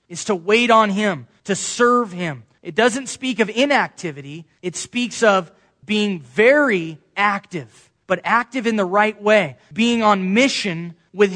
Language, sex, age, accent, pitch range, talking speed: English, male, 20-39, American, 170-230 Hz, 155 wpm